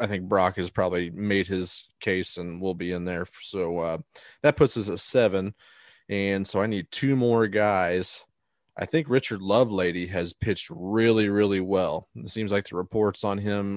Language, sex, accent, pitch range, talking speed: English, male, American, 95-110 Hz, 185 wpm